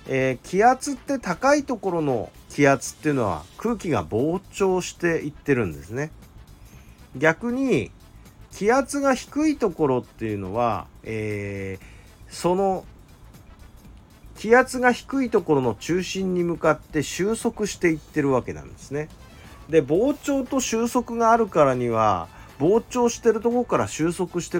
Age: 40-59